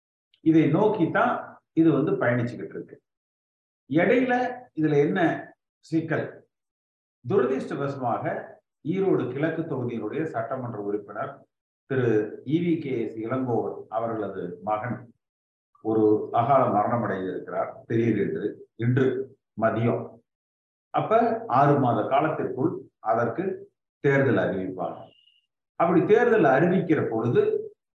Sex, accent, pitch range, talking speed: male, native, 115-160 Hz, 80 wpm